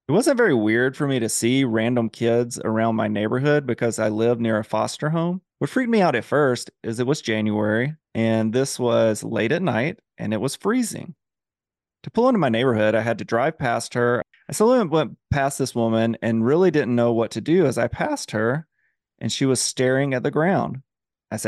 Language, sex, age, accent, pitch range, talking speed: English, male, 30-49, American, 115-150 Hz, 210 wpm